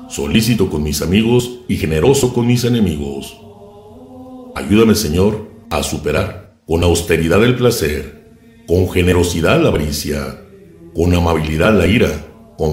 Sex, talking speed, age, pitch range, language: male, 125 wpm, 50-69, 75-105 Hz, Spanish